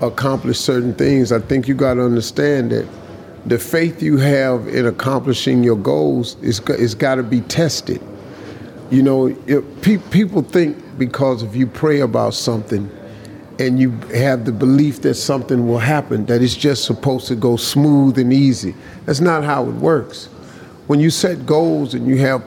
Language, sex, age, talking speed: English, male, 50-69, 170 wpm